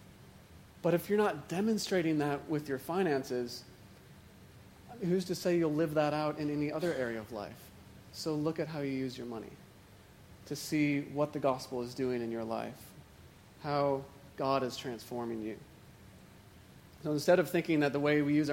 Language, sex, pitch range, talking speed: English, male, 125-160 Hz, 175 wpm